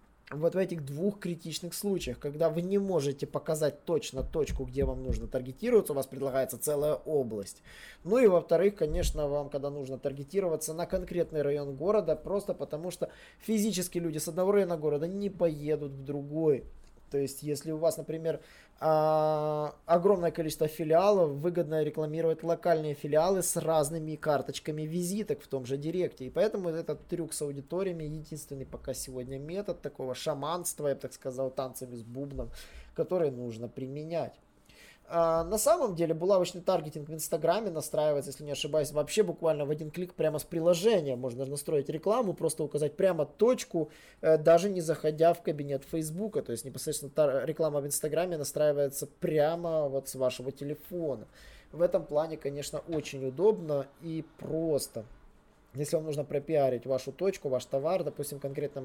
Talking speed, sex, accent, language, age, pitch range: 155 wpm, male, native, Russian, 20-39, 140-170 Hz